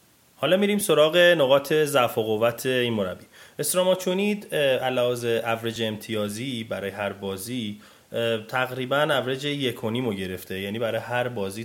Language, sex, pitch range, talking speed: Persian, male, 100-120 Hz, 130 wpm